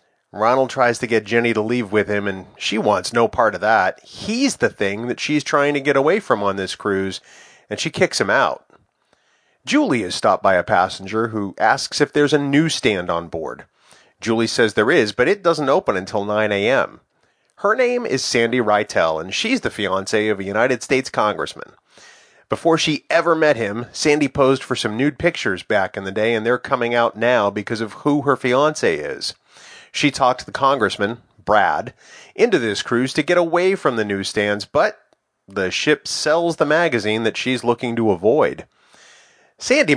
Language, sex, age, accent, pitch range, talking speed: English, male, 30-49, American, 105-145 Hz, 190 wpm